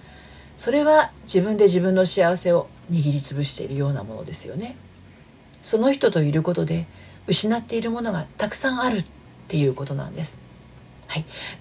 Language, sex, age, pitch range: Japanese, female, 40-59, 160-220 Hz